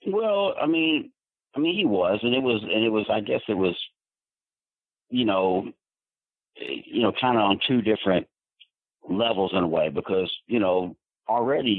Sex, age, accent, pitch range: male, 40-59, American, 85-100 Hz